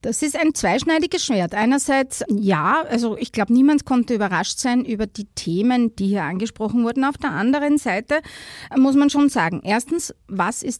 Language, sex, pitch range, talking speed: German, female, 205-250 Hz, 180 wpm